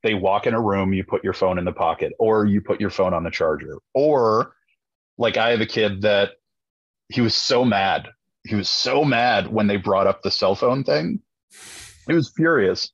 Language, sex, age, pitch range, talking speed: English, male, 30-49, 105-160 Hz, 215 wpm